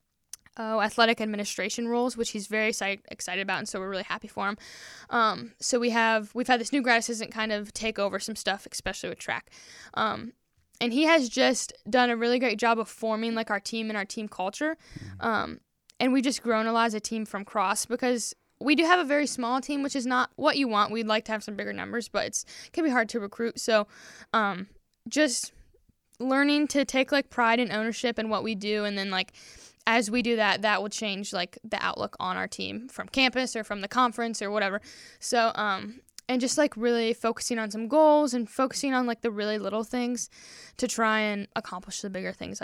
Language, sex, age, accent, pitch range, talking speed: English, female, 10-29, American, 210-245 Hz, 220 wpm